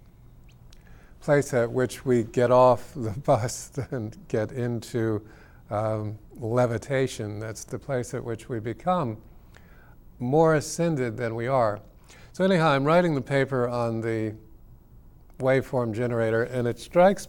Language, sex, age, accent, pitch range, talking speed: English, male, 50-69, American, 115-140 Hz, 130 wpm